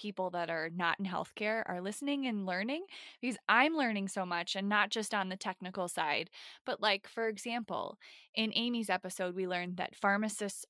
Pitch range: 190-240 Hz